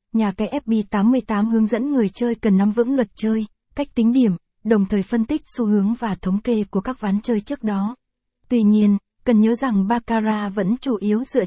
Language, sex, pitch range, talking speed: Vietnamese, female, 205-235 Hz, 210 wpm